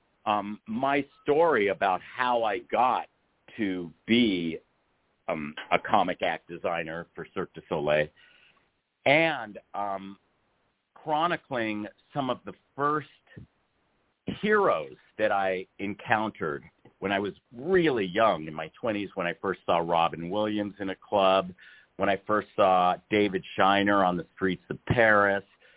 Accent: American